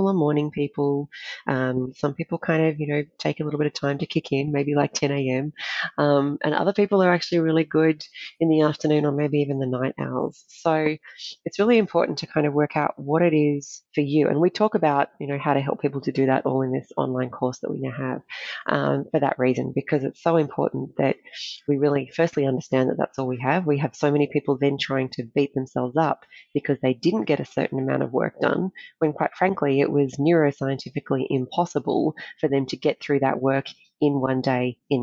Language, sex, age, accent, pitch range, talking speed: English, female, 30-49, Australian, 135-155 Hz, 225 wpm